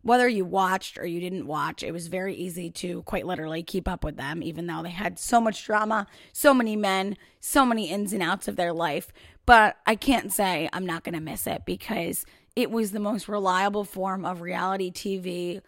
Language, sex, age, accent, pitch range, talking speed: English, female, 30-49, American, 180-215 Hz, 215 wpm